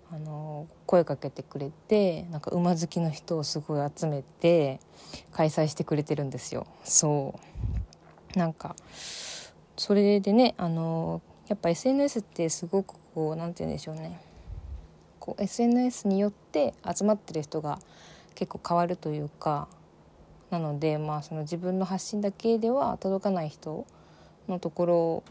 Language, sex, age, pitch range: Japanese, female, 20-39, 150-190 Hz